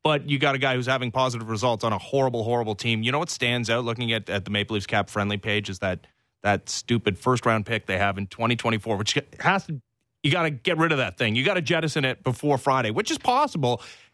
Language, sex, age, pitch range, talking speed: English, male, 30-49, 115-145 Hz, 240 wpm